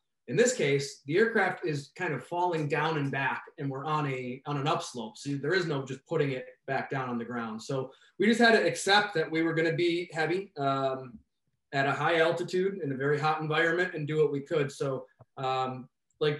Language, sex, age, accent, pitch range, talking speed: English, male, 20-39, American, 140-170 Hz, 225 wpm